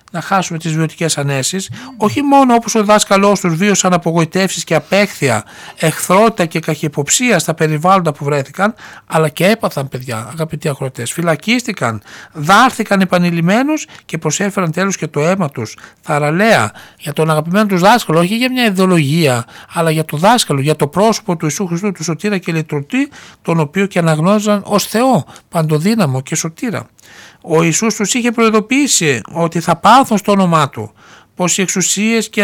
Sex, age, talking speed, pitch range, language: male, 60-79, 160 wpm, 160-210 Hz, Greek